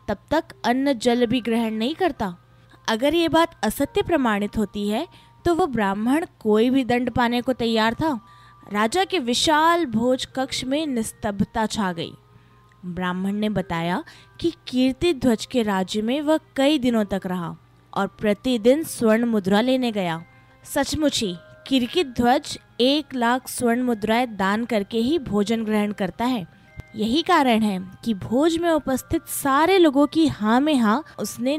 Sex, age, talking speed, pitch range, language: female, 20-39, 155 wpm, 205-290 Hz, Hindi